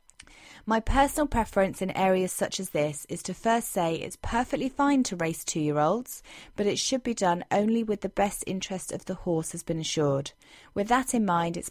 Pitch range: 175-225 Hz